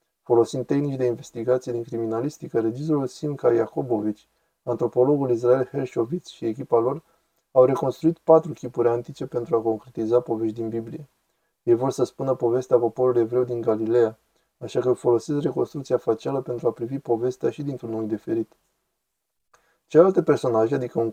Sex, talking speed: male, 150 wpm